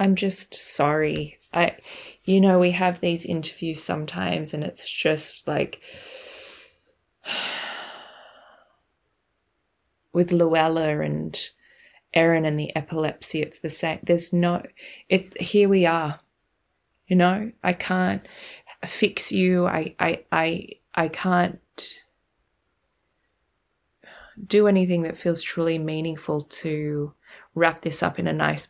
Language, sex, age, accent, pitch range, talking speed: English, female, 20-39, Australian, 155-185 Hz, 115 wpm